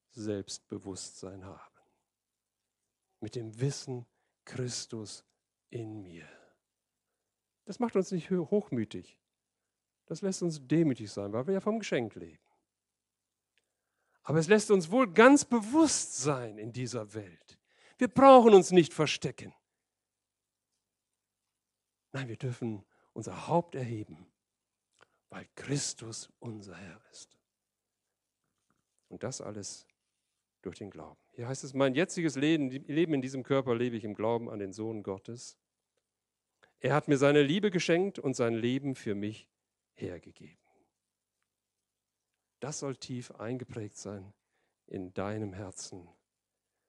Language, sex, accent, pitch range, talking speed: German, male, German, 105-150 Hz, 120 wpm